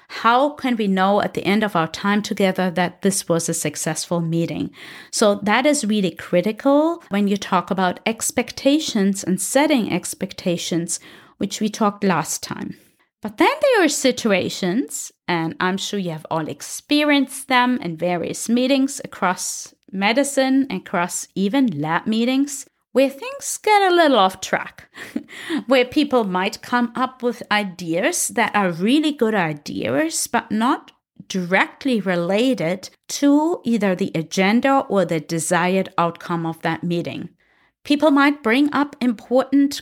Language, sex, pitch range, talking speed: English, female, 185-275 Hz, 145 wpm